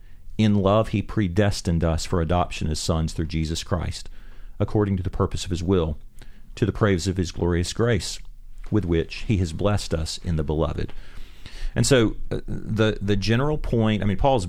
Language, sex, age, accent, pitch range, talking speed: English, male, 40-59, American, 90-115 Hz, 180 wpm